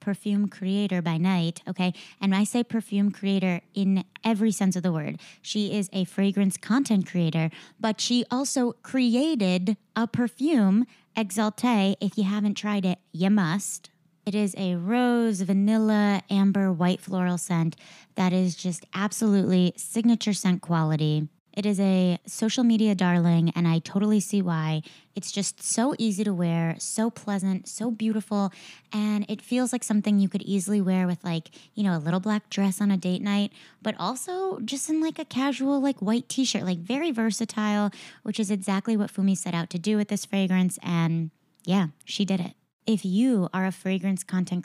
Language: English